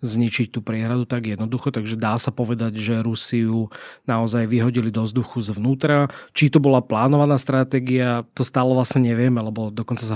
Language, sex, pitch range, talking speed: Slovak, male, 110-125 Hz, 165 wpm